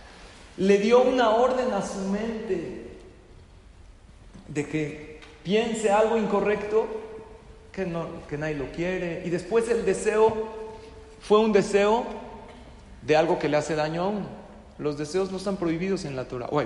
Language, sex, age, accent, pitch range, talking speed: Spanish, male, 40-59, Mexican, 150-195 Hz, 155 wpm